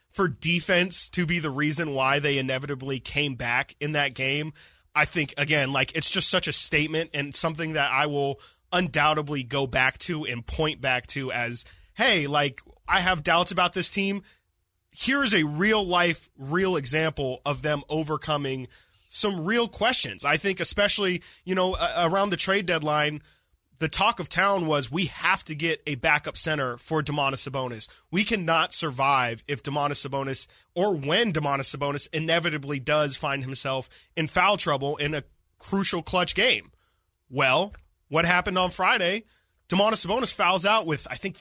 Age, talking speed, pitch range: 20-39, 165 wpm, 145-185 Hz